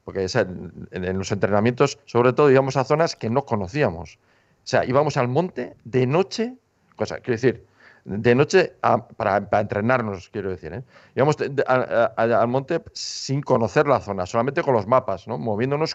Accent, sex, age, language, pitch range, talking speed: Spanish, male, 50-69, Spanish, 100-130 Hz, 190 wpm